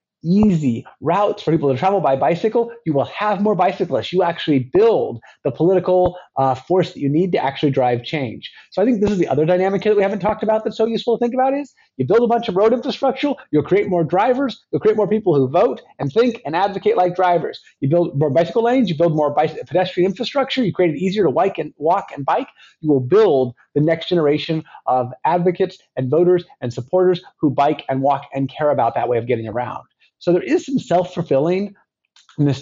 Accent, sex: American, male